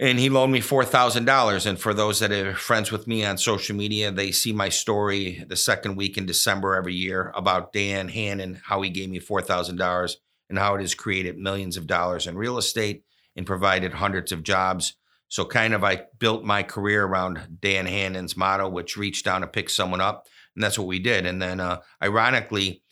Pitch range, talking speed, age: 90-105 Hz, 215 wpm, 50-69